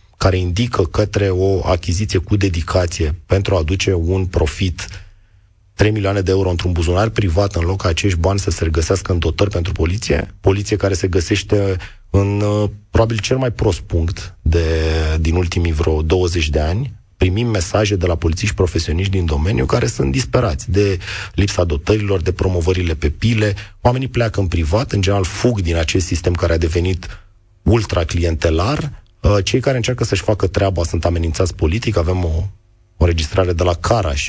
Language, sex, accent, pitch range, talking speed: Romanian, male, native, 85-100 Hz, 165 wpm